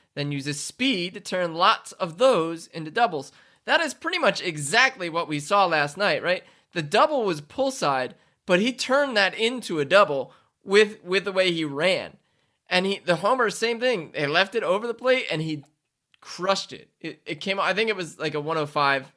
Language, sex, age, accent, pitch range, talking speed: English, male, 20-39, American, 150-200 Hz, 205 wpm